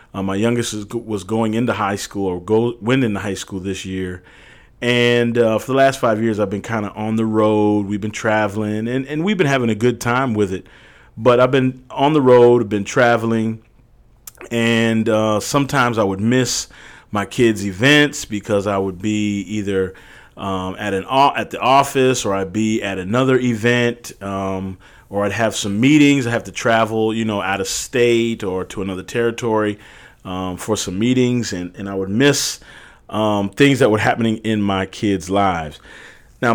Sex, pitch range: male, 95-120 Hz